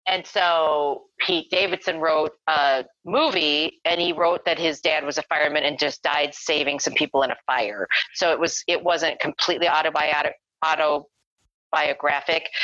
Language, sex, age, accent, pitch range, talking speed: English, female, 40-59, American, 150-235 Hz, 150 wpm